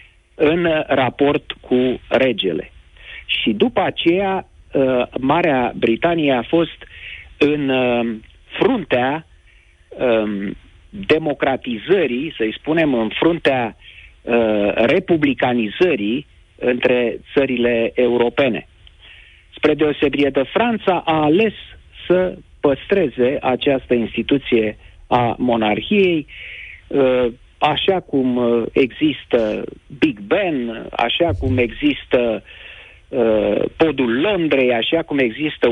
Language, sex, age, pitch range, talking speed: Romanian, male, 40-59, 120-165 Hz, 80 wpm